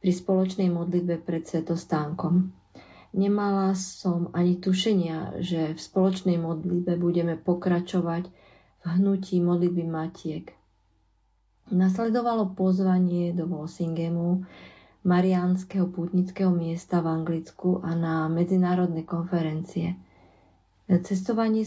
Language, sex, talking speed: Slovak, female, 90 wpm